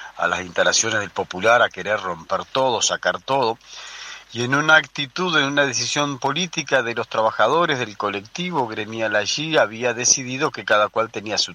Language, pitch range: Spanish, 110-160 Hz